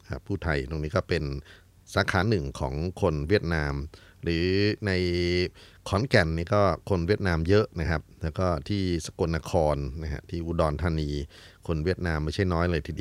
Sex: male